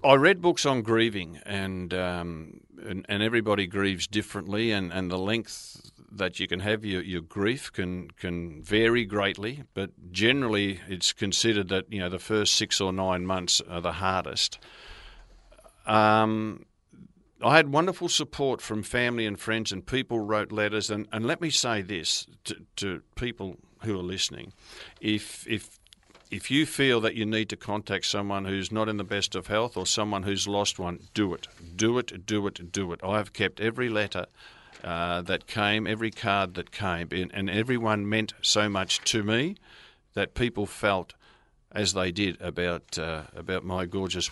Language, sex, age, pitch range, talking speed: English, male, 50-69, 95-115 Hz, 175 wpm